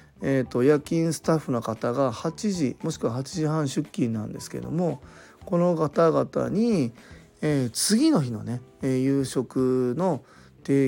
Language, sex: Japanese, male